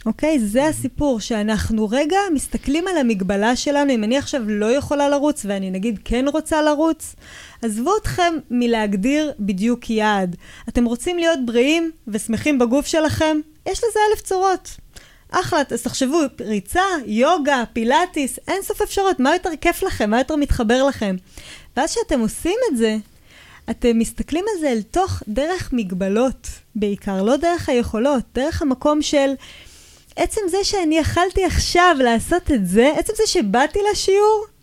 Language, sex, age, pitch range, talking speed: Hebrew, female, 20-39, 220-325 Hz, 150 wpm